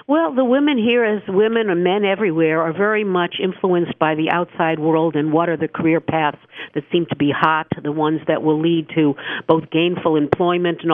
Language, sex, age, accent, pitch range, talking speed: English, female, 50-69, American, 155-180 Hz, 210 wpm